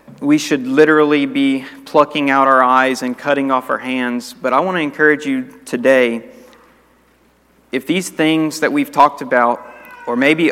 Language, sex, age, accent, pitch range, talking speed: English, male, 40-59, American, 130-160 Hz, 165 wpm